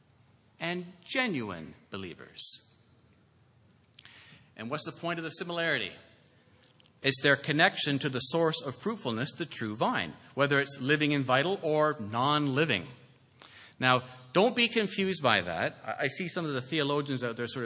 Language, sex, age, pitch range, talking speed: English, male, 40-59, 125-160 Hz, 145 wpm